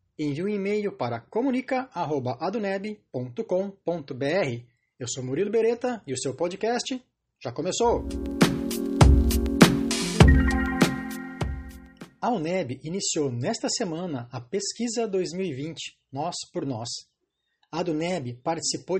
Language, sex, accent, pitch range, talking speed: Portuguese, male, Brazilian, 140-200 Hz, 90 wpm